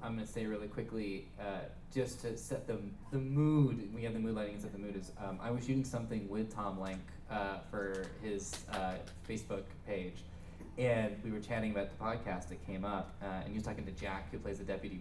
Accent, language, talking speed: American, English, 230 wpm